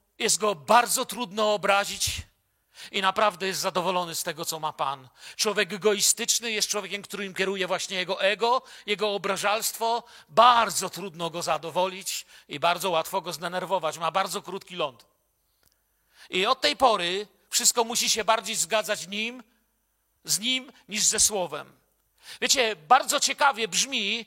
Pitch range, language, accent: 195-240 Hz, Polish, native